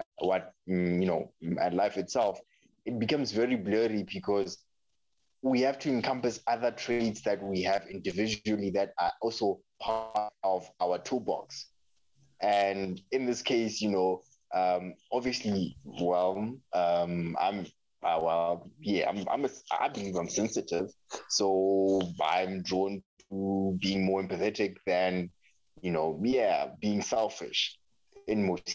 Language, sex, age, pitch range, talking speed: English, male, 20-39, 95-120 Hz, 130 wpm